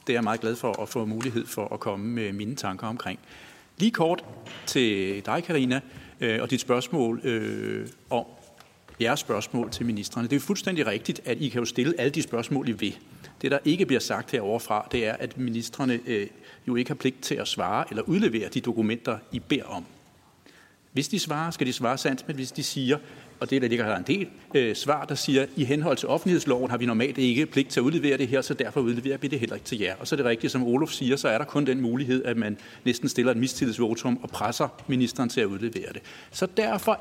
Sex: male